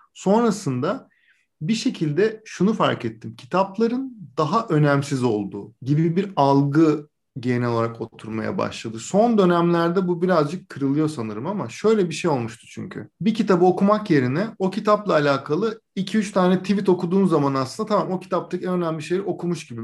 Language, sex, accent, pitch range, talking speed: Turkish, male, native, 125-180 Hz, 150 wpm